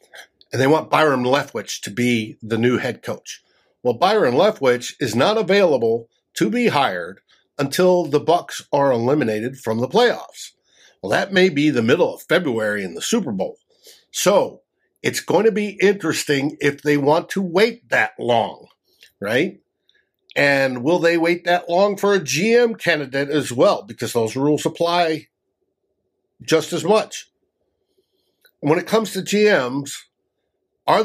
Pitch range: 135-200 Hz